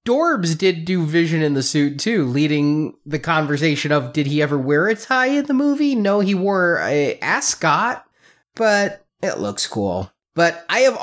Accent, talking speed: American, 180 wpm